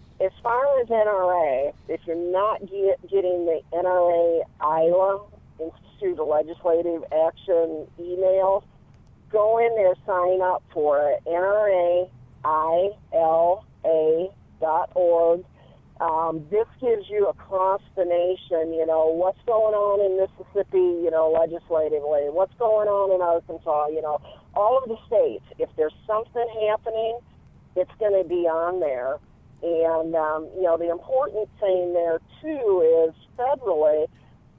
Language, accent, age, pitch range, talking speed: English, American, 50-69, 165-215 Hz, 125 wpm